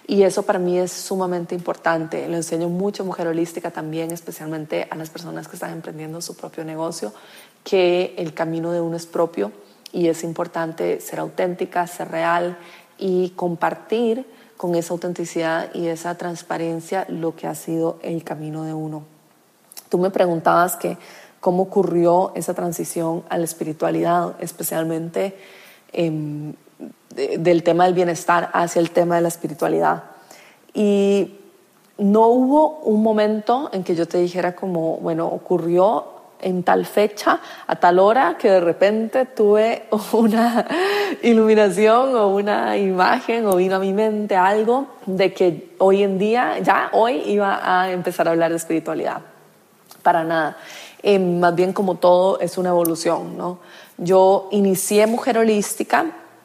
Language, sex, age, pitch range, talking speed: Spanish, female, 30-49, 170-205 Hz, 150 wpm